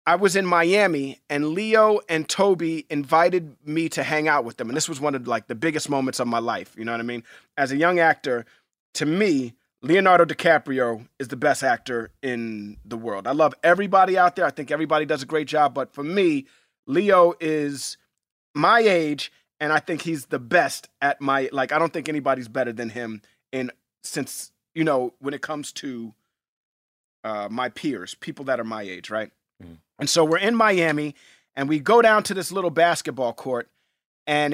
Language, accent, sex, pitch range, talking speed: English, American, male, 135-175 Hz, 200 wpm